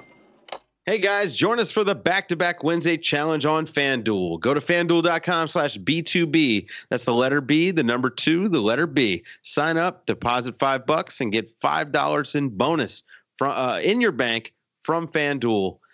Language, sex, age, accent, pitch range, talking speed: English, male, 30-49, American, 120-175 Hz, 160 wpm